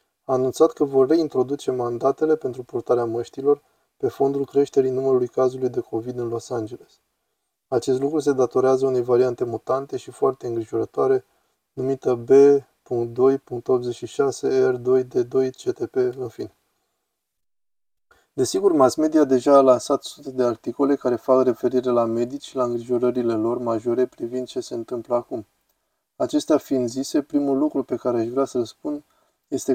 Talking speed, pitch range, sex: 150 wpm, 125-145 Hz, male